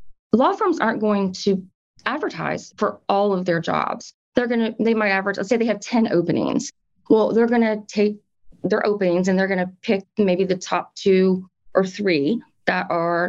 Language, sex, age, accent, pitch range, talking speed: English, female, 30-49, American, 185-225 Hz, 205 wpm